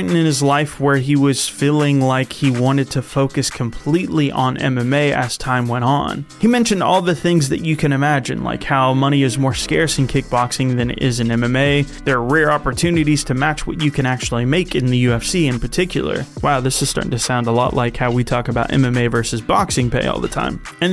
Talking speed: 225 wpm